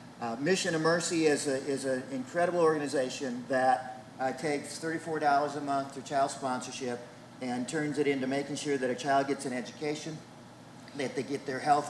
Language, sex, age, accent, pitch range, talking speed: English, male, 50-69, American, 130-150 Hz, 180 wpm